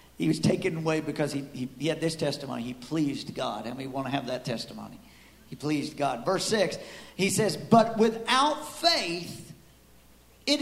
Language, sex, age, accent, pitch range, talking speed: English, male, 50-69, American, 185-265 Hz, 180 wpm